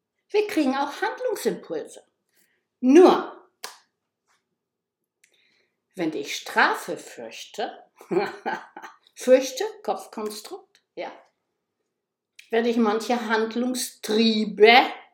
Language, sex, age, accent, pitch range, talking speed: German, female, 60-79, German, 225-345 Hz, 65 wpm